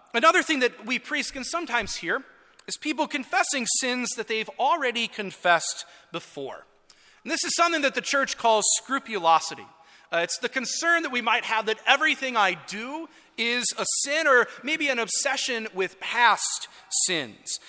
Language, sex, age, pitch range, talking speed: English, male, 30-49, 205-275 Hz, 165 wpm